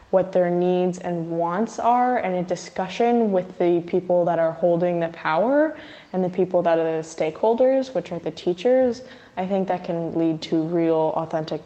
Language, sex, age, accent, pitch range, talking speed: English, female, 10-29, American, 165-185 Hz, 185 wpm